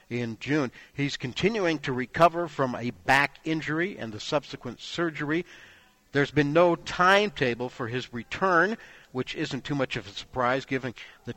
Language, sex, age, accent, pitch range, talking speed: English, male, 60-79, American, 125-160 Hz, 160 wpm